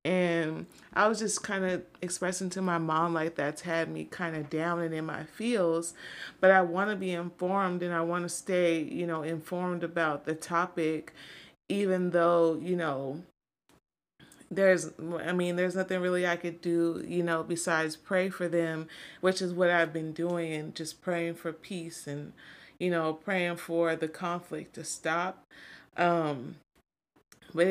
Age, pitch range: 30-49, 165-185 Hz